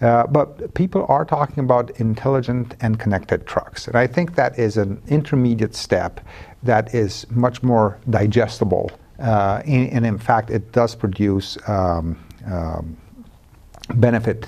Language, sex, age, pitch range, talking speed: English, male, 50-69, 100-120 Hz, 140 wpm